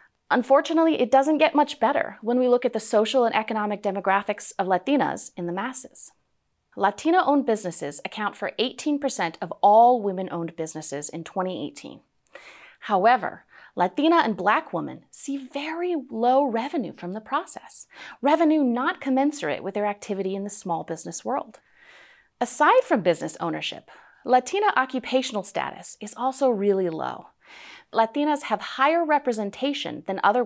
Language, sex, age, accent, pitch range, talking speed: English, female, 30-49, American, 195-280 Hz, 140 wpm